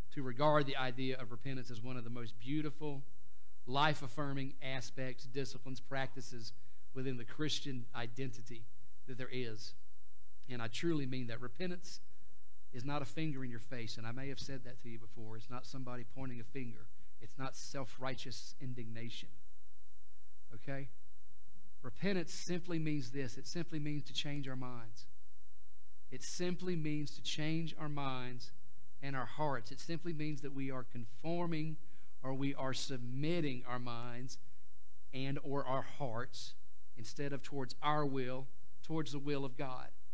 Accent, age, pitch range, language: American, 40-59, 120-145 Hz, English